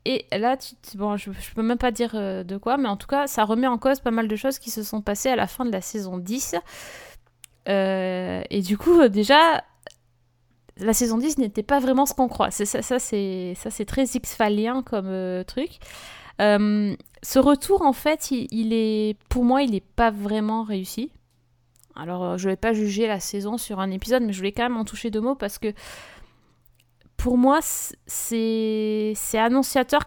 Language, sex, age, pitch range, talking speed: French, female, 20-39, 195-250 Hz, 205 wpm